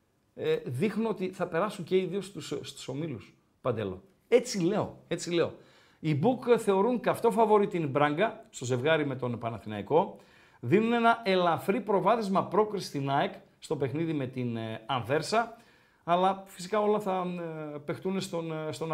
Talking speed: 140 wpm